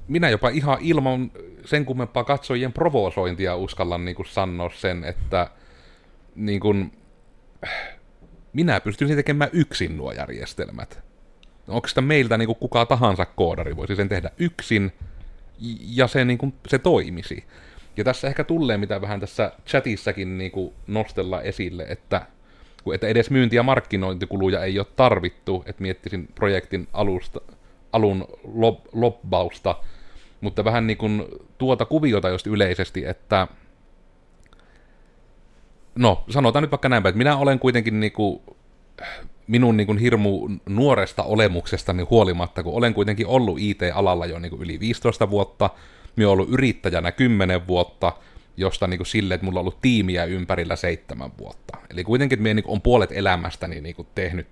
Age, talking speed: 30-49, 130 wpm